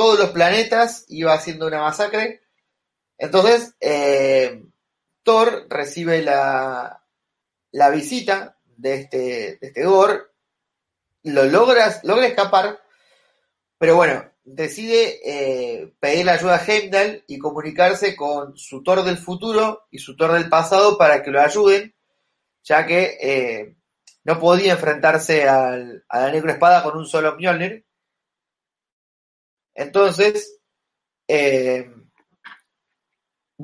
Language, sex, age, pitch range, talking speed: Spanish, male, 30-49, 150-210 Hz, 120 wpm